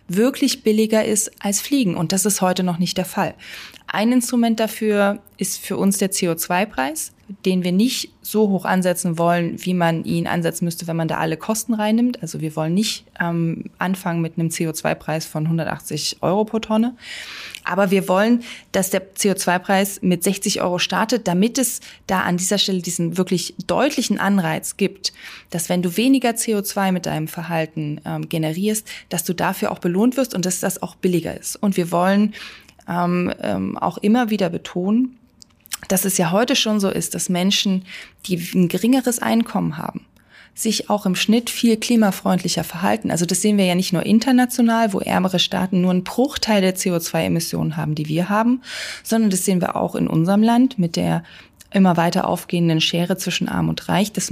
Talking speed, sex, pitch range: 180 wpm, female, 175-220 Hz